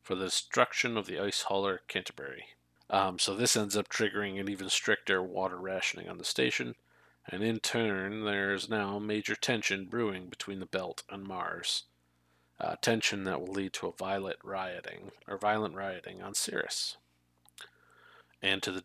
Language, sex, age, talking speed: English, male, 40-59, 170 wpm